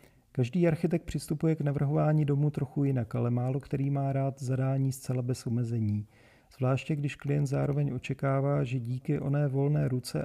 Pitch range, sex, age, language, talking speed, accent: 125-145 Hz, male, 40-59, Czech, 160 wpm, native